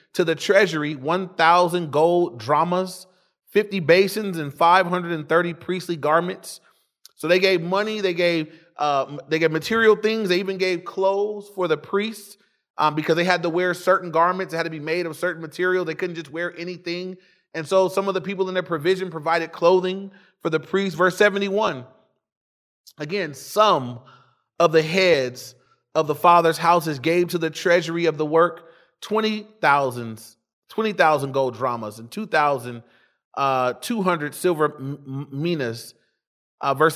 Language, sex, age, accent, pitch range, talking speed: English, male, 30-49, American, 150-190 Hz, 150 wpm